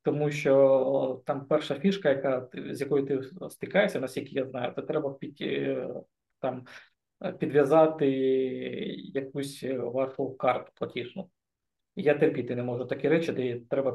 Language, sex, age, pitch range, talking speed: Ukrainian, male, 20-39, 135-155 Hz, 130 wpm